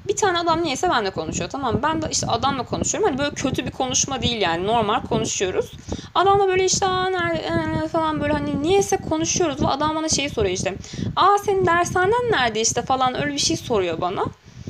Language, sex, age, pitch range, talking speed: Turkish, female, 20-39, 185-255 Hz, 195 wpm